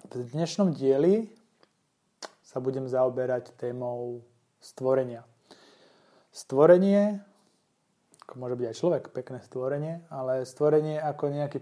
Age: 20-39